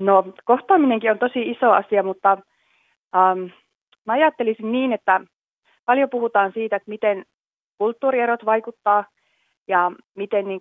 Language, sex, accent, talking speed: Finnish, female, native, 125 wpm